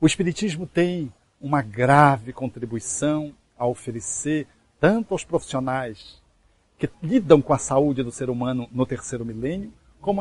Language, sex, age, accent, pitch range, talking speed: Portuguese, male, 60-79, Brazilian, 125-175 Hz, 135 wpm